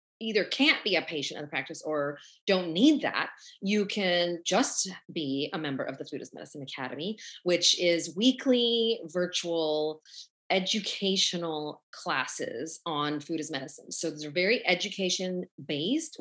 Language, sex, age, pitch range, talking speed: English, female, 30-49, 160-210 Hz, 150 wpm